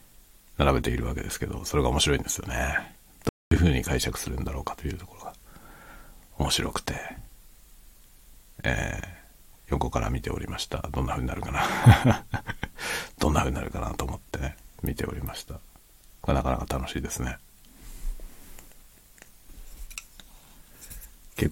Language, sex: Japanese, male